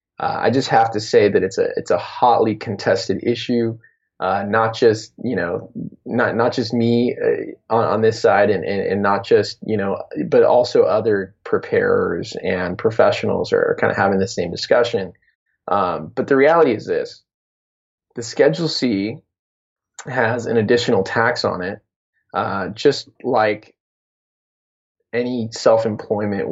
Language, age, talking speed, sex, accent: English, 20-39, 155 wpm, male, American